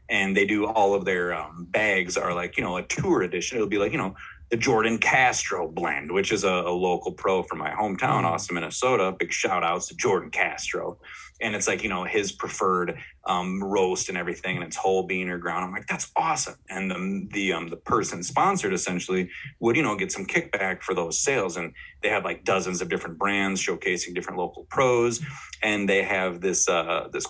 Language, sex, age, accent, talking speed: English, male, 30-49, American, 215 wpm